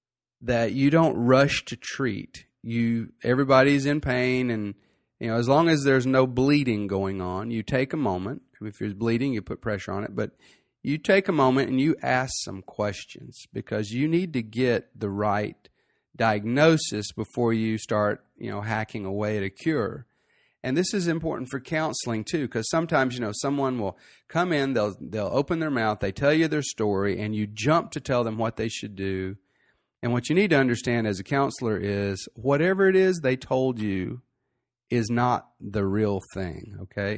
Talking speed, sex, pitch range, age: 195 wpm, male, 105-135 Hz, 40-59